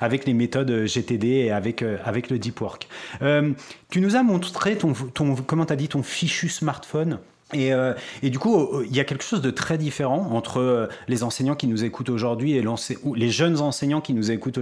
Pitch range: 120-145 Hz